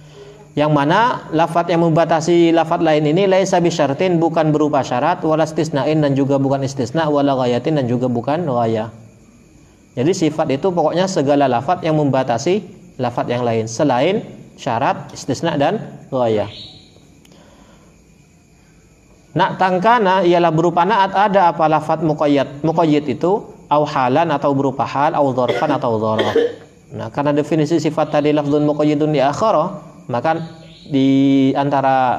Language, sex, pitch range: Indonesian, male, 130-165 Hz